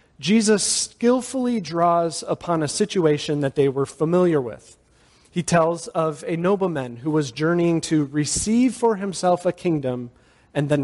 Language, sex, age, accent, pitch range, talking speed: English, male, 40-59, American, 150-195 Hz, 150 wpm